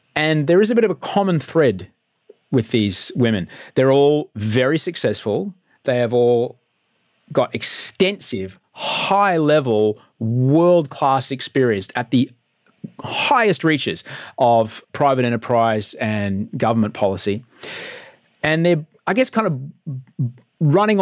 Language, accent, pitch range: English, Australian, 115-155 Hz